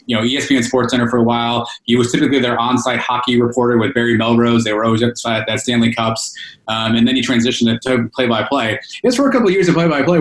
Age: 30-49